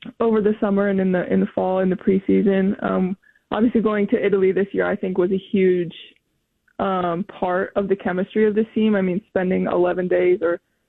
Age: 20-39